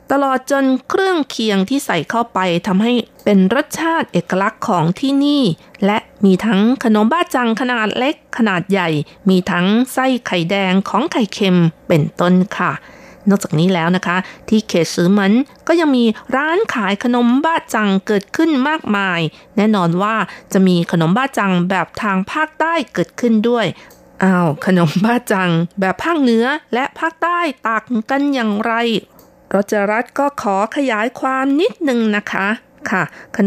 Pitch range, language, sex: 185-245 Hz, Thai, female